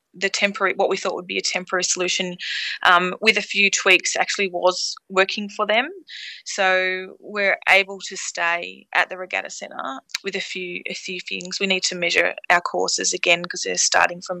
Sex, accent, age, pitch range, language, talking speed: female, Australian, 20-39, 180-205 Hz, English, 190 wpm